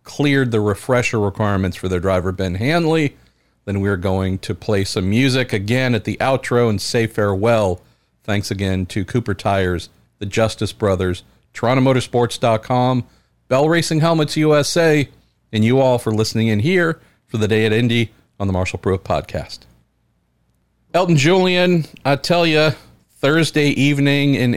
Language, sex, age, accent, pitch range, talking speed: English, male, 50-69, American, 100-140 Hz, 150 wpm